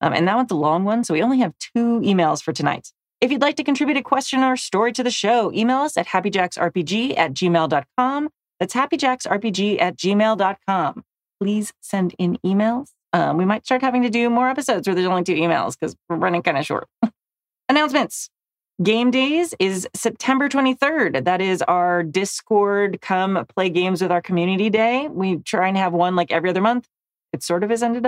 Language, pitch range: English, 175-240 Hz